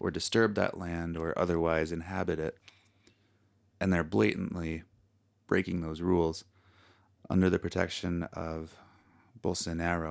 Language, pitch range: English, 85-100 Hz